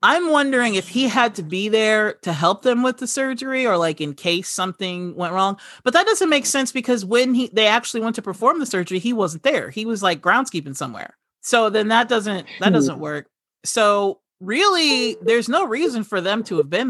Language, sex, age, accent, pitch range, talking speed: English, male, 30-49, American, 175-235 Hz, 215 wpm